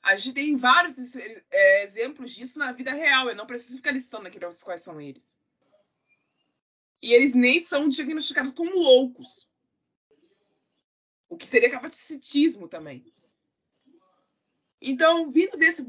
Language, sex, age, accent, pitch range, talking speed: Portuguese, female, 20-39, Brazilian, 205-300 Hz, 130 wpm